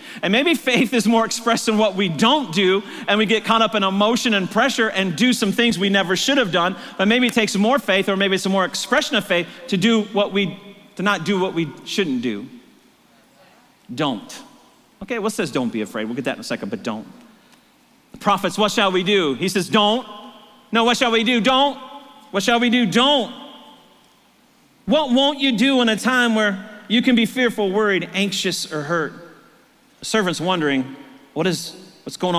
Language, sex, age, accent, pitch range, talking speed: English, male, 40-59, American, 180-240 Hz, 210 wpm